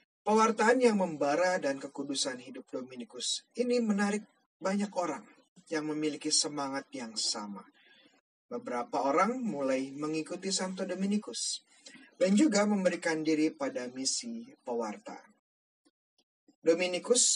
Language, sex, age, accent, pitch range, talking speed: Indonesian, male, 30-49, native, 145-225 Hz, 105 wpm